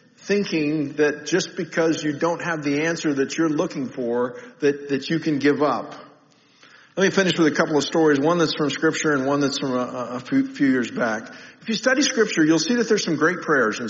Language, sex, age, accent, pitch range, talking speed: English, male, 50-69, American, 150-195 Hz, 225 wpm